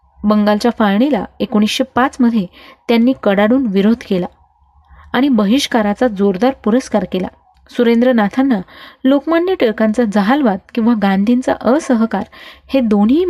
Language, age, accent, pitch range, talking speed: Marathi, 30-49, native, 210-255 Hz, 100 wpm